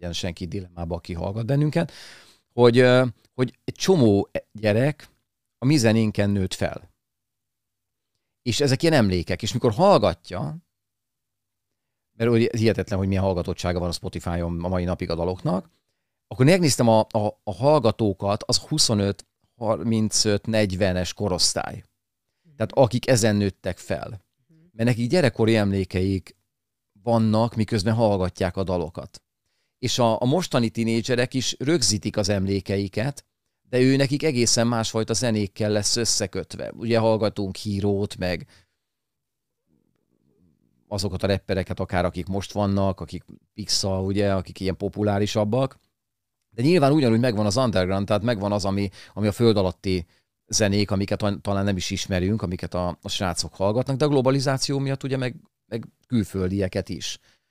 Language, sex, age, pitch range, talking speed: Hungarian, male, 40-59, 95-120 Hz, 130 wpm